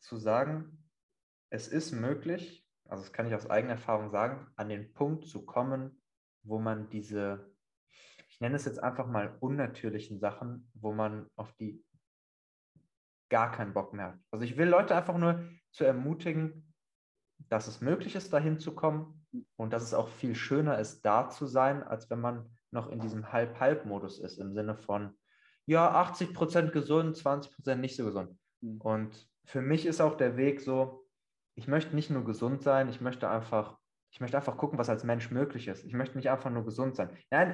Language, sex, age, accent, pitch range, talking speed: English, male, 20-39, German, 110-150 Hz, 180 wpm